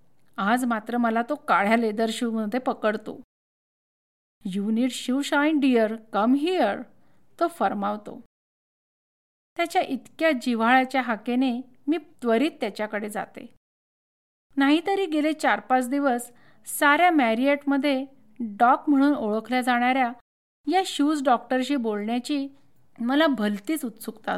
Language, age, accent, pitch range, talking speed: Marathi, 50-69, native, 230-285 Hz, 110 wpm